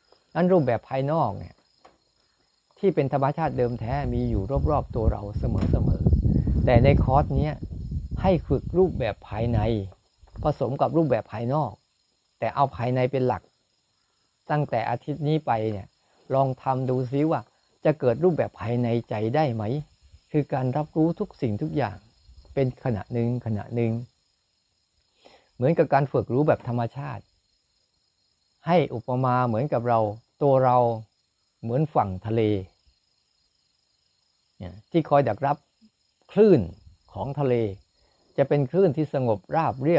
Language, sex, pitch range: Thai, male, 110-145 Hz